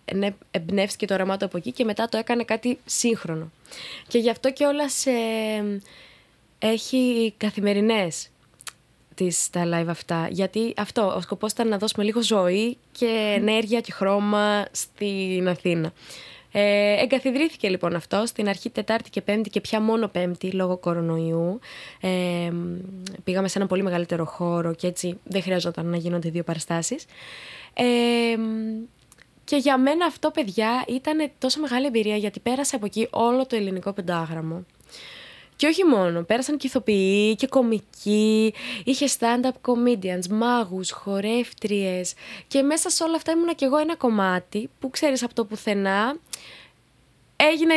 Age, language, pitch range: 20-39, Greek, 185-250 Hz